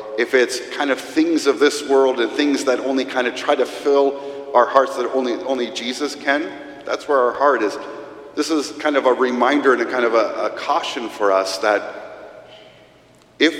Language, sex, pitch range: English, male, 115-150 Hz